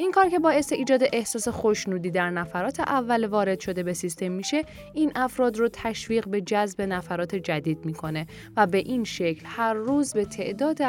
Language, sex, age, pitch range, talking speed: Persian, female, 10-29, 180-255 Hz, 175 wpm